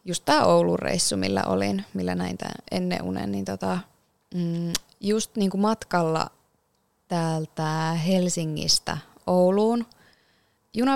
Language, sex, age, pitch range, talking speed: Finnish, female, 20-39, 160-220 Hz, 105 wpm